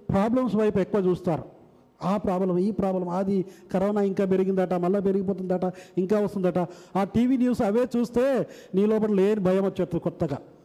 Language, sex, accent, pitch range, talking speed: Telugu, male, native, 165-220 Hz, 150 wpm